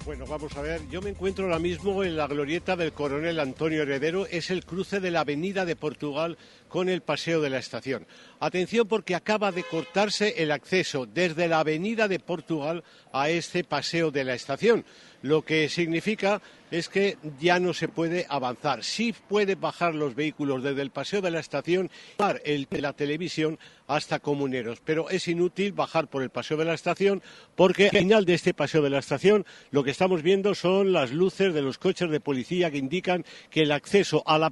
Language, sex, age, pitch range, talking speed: Spanish, male, 50-69, 150-195 Hz, 200 wpm